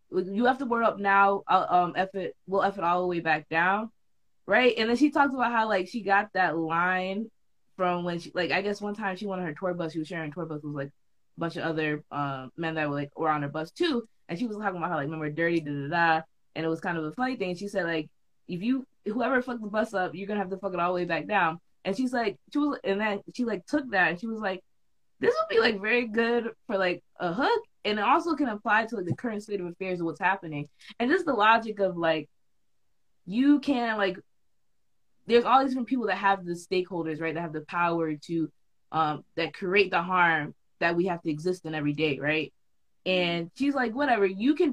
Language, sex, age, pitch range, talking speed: English, female, 20-39, 165-220 Hz, 255 wpm